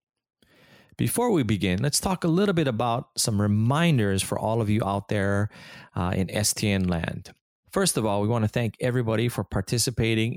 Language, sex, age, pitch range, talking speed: English, male, 30-49, 95-120 Hz, 180 wpm